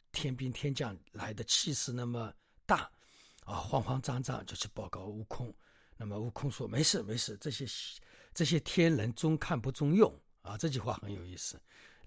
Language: Chinese